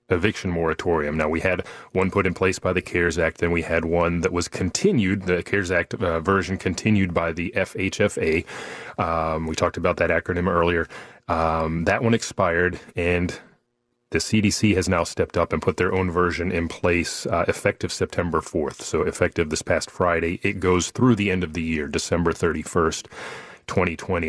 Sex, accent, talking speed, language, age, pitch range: male, American, 185 wpm, English, 30-49, 85-100 Hz